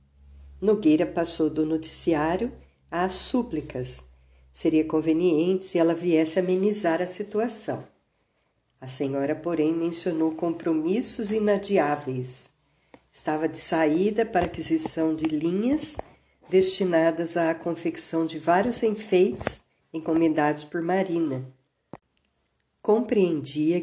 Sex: female